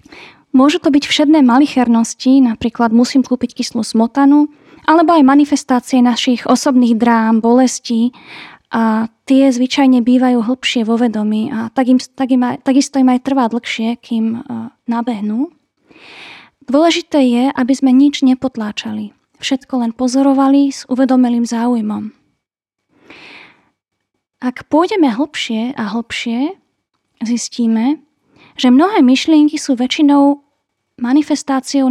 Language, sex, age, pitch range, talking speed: Slovak, female, 20-39, 235-280 Hz, 120 wpm